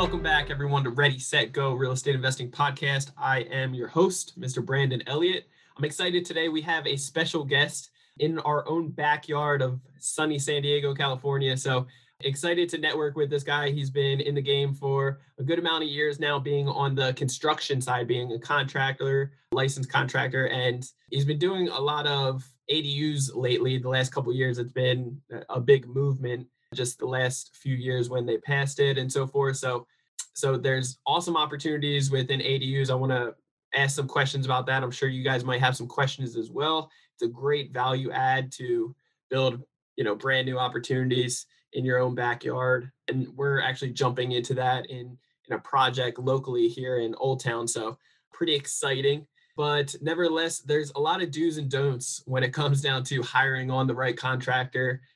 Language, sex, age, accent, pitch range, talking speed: English, male, 20-39, American, 130-145 Hz, 190 wpm